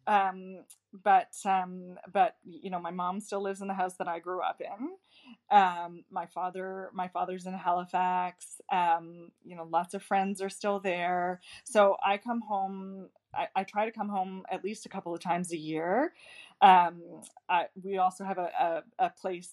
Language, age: English, 20-39